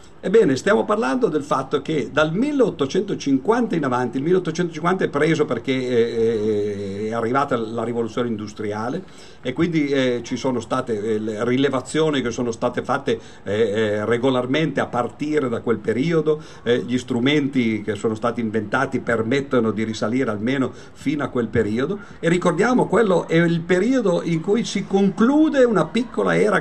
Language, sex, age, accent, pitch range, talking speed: Italian, male, 50-69, native, 115-170 Hz, 145 wpm